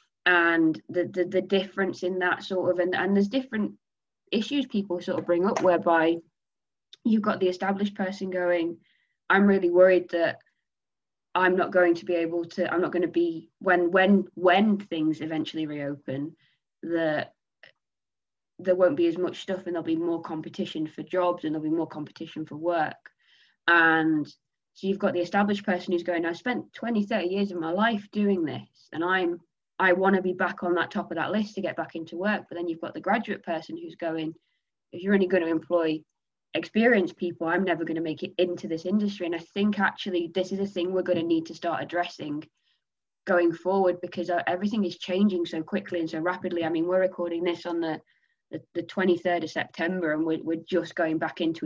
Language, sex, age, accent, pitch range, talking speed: English, female, 20-39, British, 165-190 Hz, 205 wpm